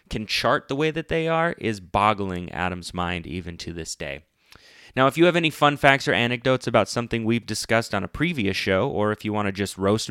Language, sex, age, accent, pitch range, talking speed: English, male, 30-49, American, 105-145 Hz, 230 wpm